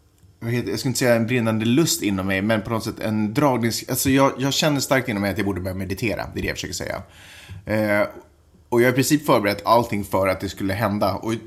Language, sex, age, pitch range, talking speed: Swedish, male, 30-49, 95-120 Hz, 245 wpm